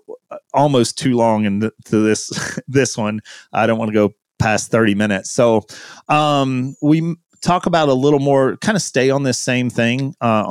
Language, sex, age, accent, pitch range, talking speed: English, male, 30-49, American, 105-130 Hz, 190 wpm